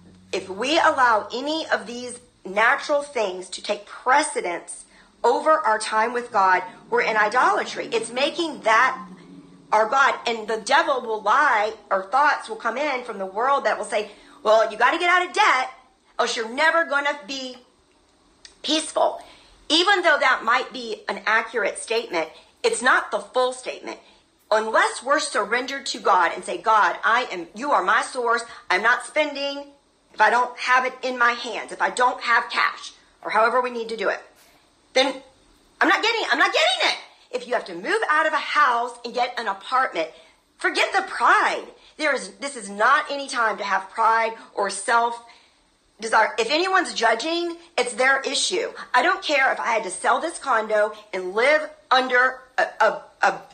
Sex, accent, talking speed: female, American, 185 wpm